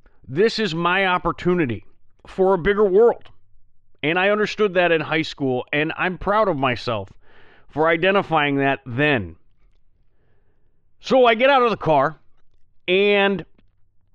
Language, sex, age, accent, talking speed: English, male, 40-59, American, 135 wpm